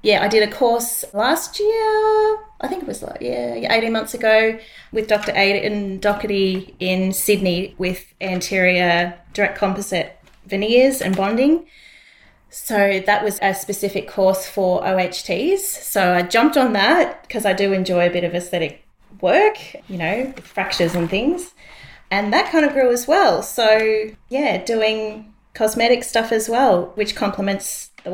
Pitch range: 185-220 Hz